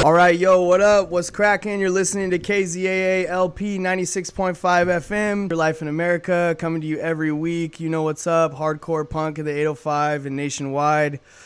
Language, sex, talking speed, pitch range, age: English, male, 175 wpm, 140-165 Hz, 20-39